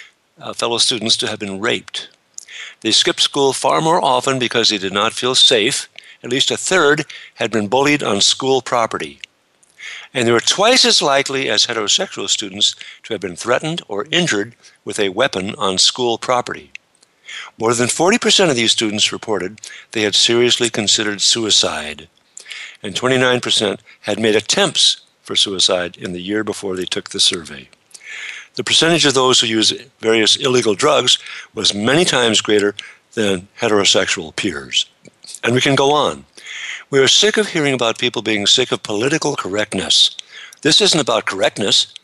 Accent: American